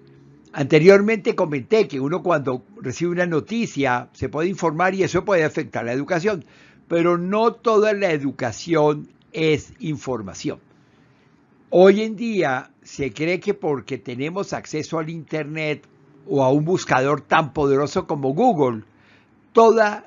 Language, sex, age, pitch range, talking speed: Spanish, male, 60-79, 140-185 Hz, 130 wpm